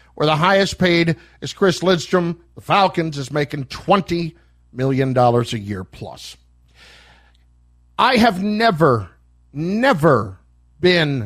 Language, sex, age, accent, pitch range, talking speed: English, male, 50-69, American, 125-185 Hz, 110 wpm